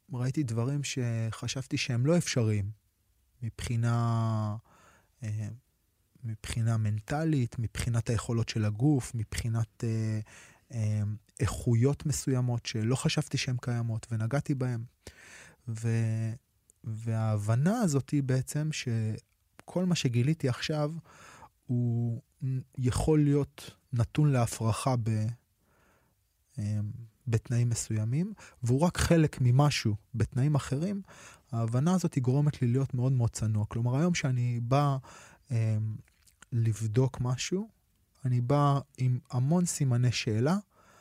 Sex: male